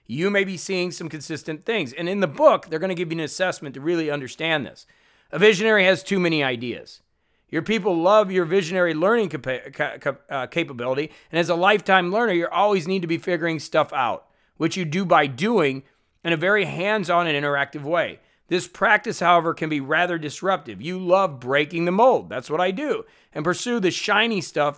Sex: male